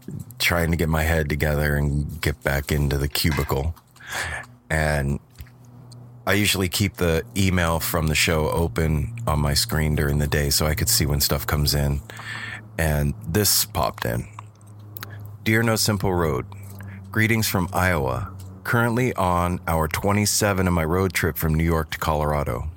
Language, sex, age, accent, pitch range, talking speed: English, male, 30-49, American, 80-100 Hz, 160 wpm